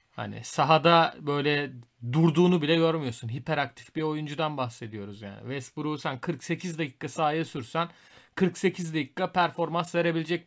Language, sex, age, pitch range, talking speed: Turkish, male, 40-59, 130-165 Hz, 120 wpm